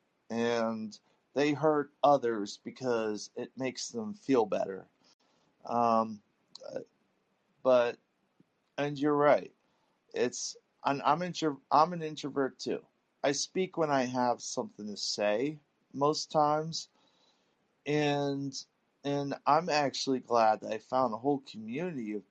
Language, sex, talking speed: English, male, 120 wpm